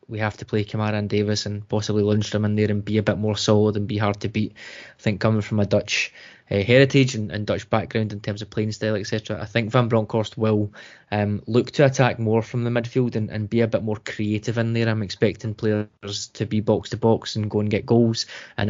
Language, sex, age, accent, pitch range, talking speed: English, male, 20-39, British, 105-120 Hz, 240 wpm